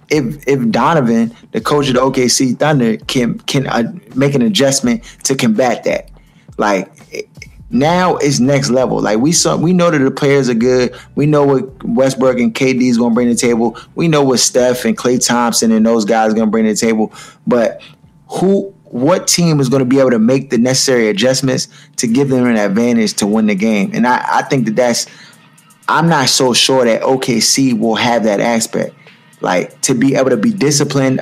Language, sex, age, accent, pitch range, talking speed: English, male, 20-39, American, 120-150 Hz, 210 wpm